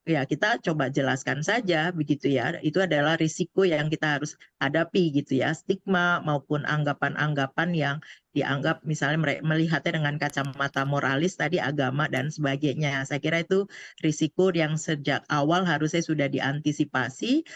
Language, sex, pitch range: Indonesian, female, 145-170 Hz